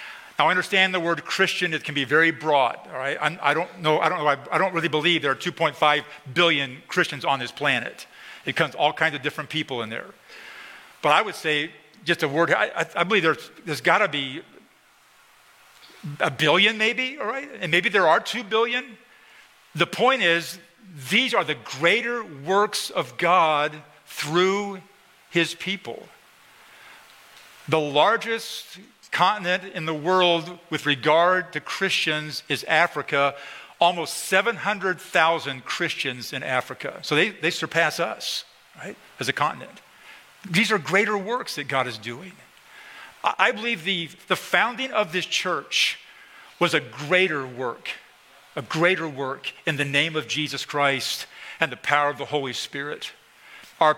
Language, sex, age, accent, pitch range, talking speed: English, male, 50-69, American, 150-190 Hz, 155 wpm